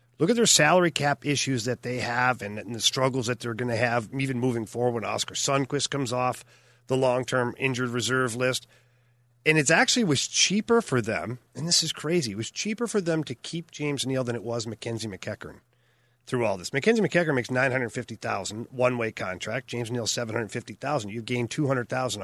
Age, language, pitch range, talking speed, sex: 40-59, English, 120-150 Hz, 195 wpm, male